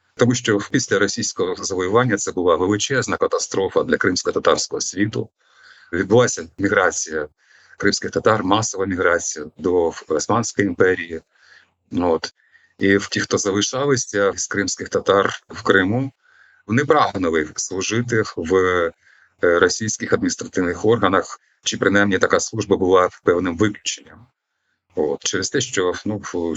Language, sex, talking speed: Ukrainian, male, 115 wpm